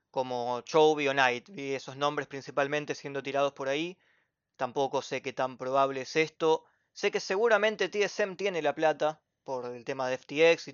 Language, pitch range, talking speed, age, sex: Spanish, 130-165 Hz, 180 wpm, 20-39, male